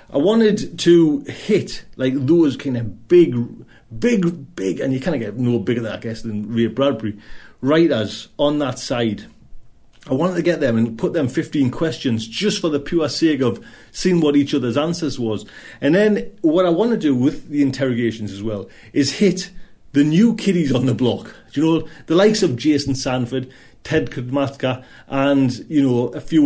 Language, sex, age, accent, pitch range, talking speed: English, male, 40-59, British, 120-160 Hz, 195 wpm